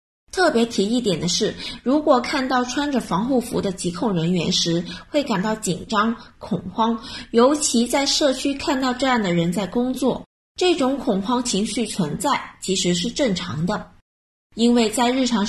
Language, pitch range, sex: Chinese, 190-265 Hz, female